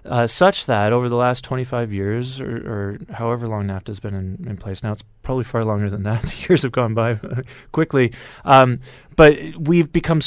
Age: 30-49